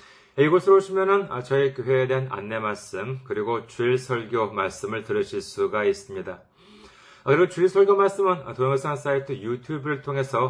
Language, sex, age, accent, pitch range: Korean, male, 30-49, native, 125-180 Hz